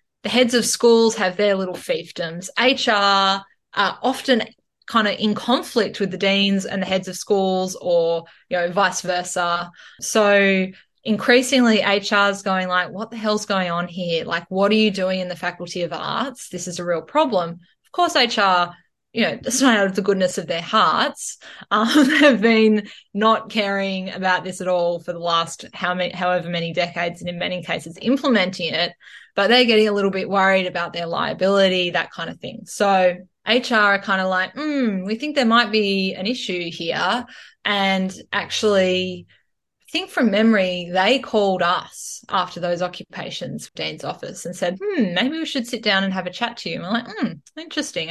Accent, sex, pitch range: Australian, female, 180-225 Hz